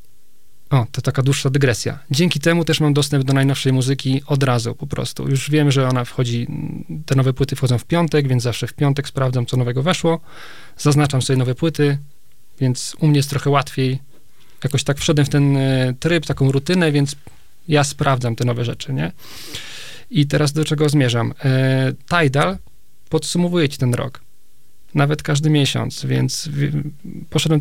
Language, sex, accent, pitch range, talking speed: Polish, male, native, 130-150 Hz, 170 wpm